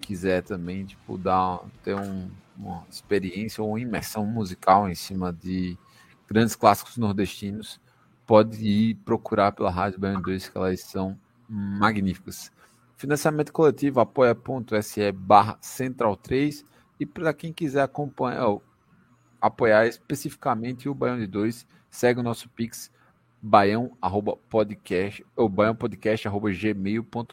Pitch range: 105-140 Hz